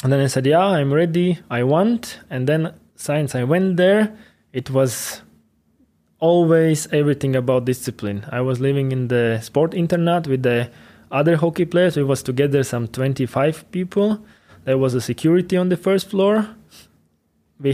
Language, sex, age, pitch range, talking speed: German, male, 20-39, 125-160 Hz, 160 wpm